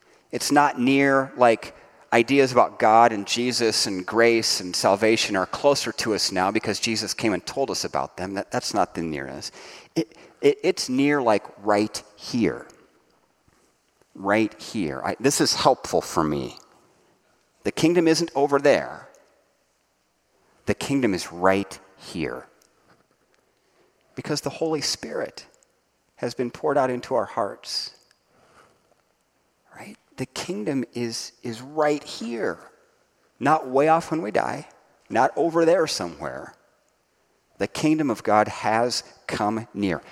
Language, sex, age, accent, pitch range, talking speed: English, male, 40-59, American, 110-150 Hz, 135 wpm